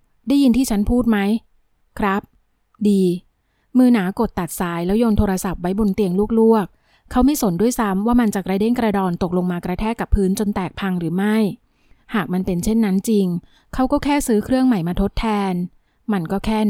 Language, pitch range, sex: Thai, 190-225 Hz, female